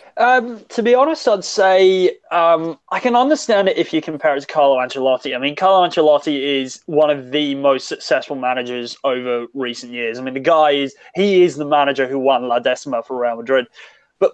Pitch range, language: 135-185 Hz, English